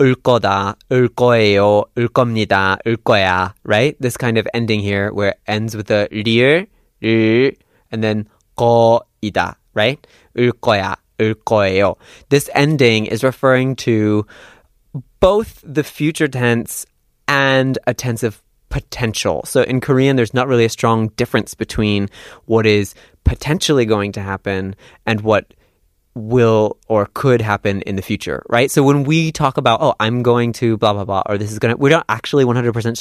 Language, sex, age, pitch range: Korean, male, 20-39, 105-125 Hz